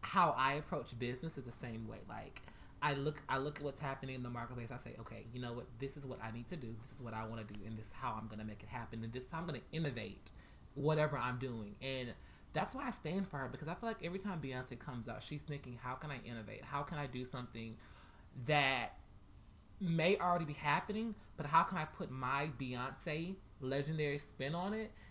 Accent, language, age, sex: American, English, 20-39, male